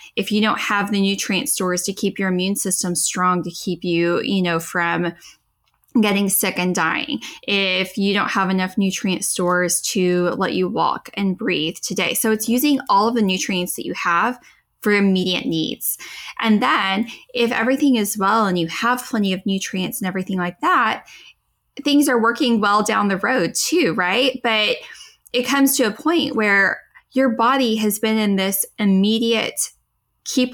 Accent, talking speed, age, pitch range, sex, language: American, 175 wpm, 10-29, 185-230 Hz, female, English